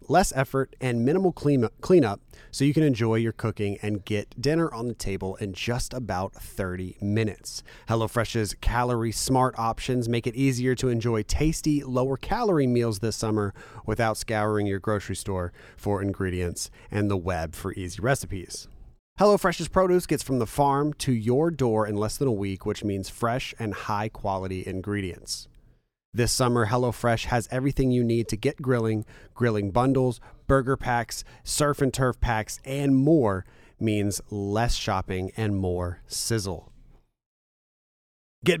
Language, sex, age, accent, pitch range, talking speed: English, male, 30-49, American, 105-140 Hz, 160 wpm